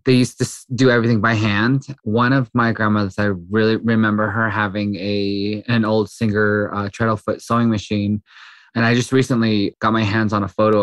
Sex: male